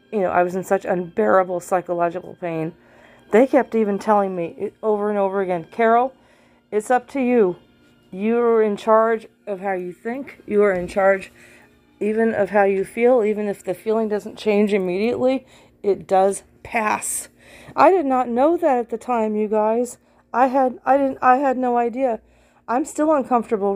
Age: 40-59